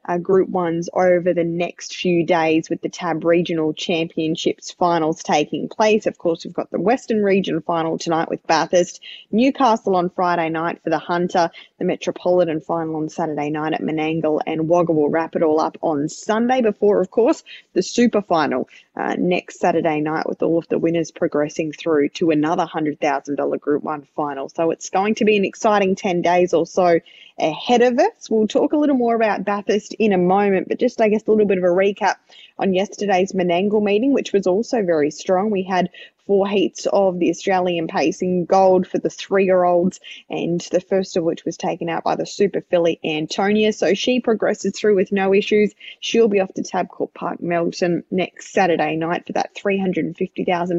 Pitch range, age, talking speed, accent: 165-200 Hz, 20-39, 195 wpm, Australian